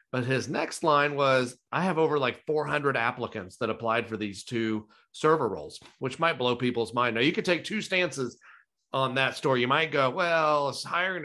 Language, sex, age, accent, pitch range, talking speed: English, male, 40-59, American, 120-155 Hz, 195 wpm